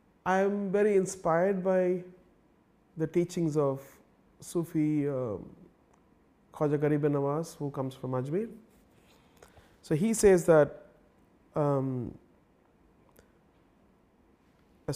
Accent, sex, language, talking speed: Indian, male, English, 90 wpm